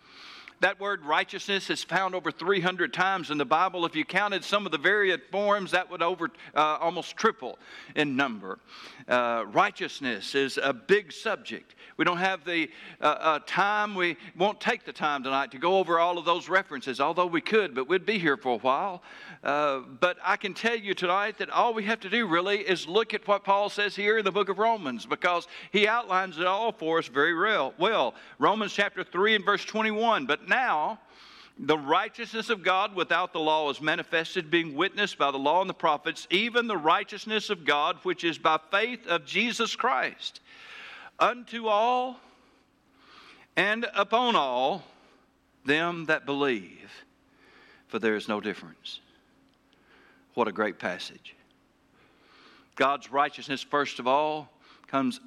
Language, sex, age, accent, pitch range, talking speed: English, male, 60-79, American, 155-205 Hz, 175 wpm